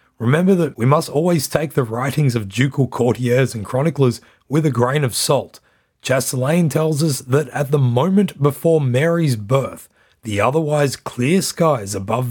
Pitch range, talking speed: 120-150 Hz, 160 wpm